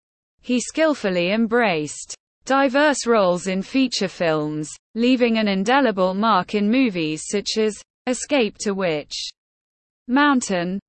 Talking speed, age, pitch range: 110 wpm, 20-39, 180-245 Hz